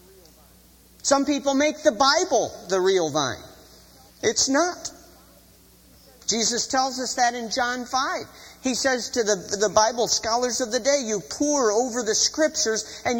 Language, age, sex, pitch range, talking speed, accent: English, 50-69, male, 160-265 Hz, 150 wpm, American